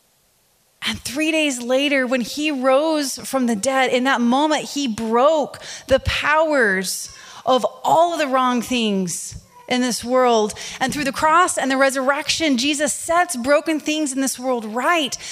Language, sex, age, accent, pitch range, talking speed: English, female, 30-49, American, 250-305 Hz, 160 wpm